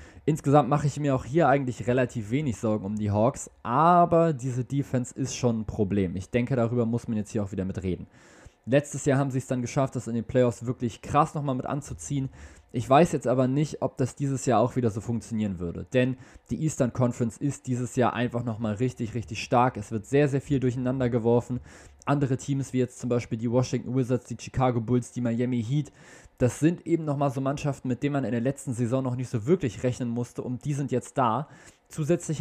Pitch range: 115-140 Hz